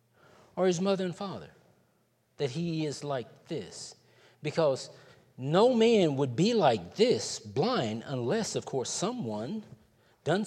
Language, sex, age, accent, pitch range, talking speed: English, male, 50-69, American, 120-170 Hz, 130 wpm